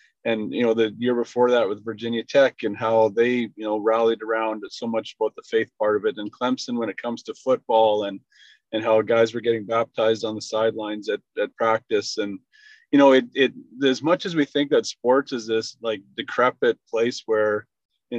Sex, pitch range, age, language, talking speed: male, 110-145 Hz, 30-49, English, 210 wpm